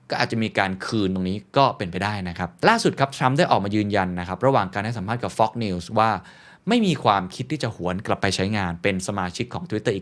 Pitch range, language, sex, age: 95-130 Hz, Thai, male, 20-39